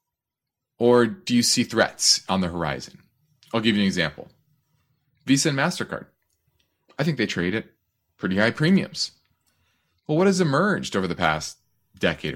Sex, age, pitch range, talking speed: male, 30-49, 95-135 Hz, 155 wpm